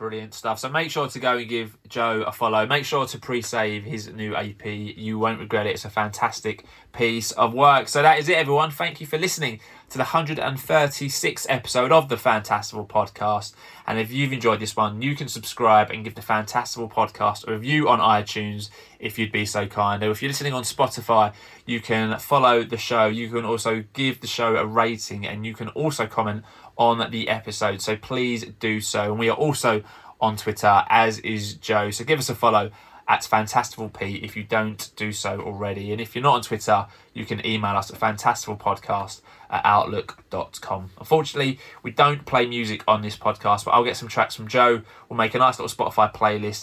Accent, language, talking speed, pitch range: British, English, 205 wpm, 105-125 Hz